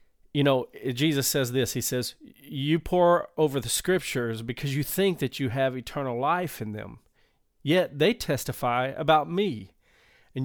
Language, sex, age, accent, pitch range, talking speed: English, male, 40-59, American, 130-160 Hz, 160 wpm